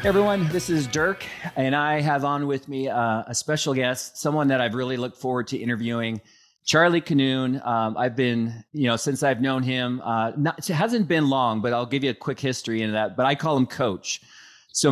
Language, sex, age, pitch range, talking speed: English, male, 30-49, 115-135 Hz, 220 wpm